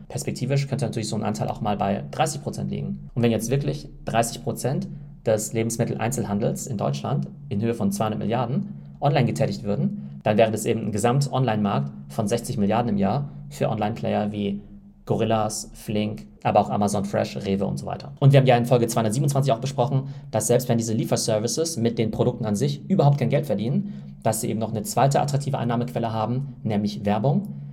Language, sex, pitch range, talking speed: German, male, 105-130 Hz, 185 wpm